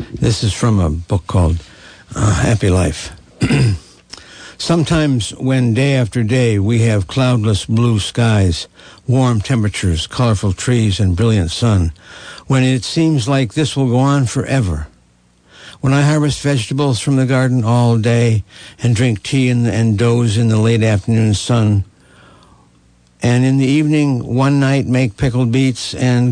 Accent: American